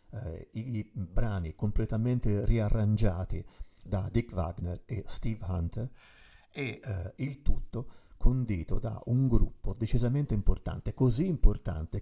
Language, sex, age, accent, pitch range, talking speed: Italian, male, 50-69, native, 95-115 Hz, 115 wpm